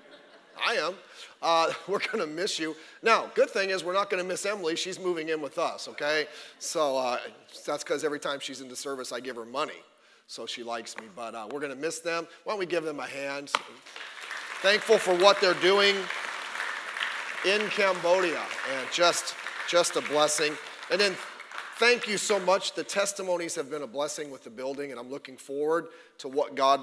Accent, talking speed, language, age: American, 200 wpm, English, 40-59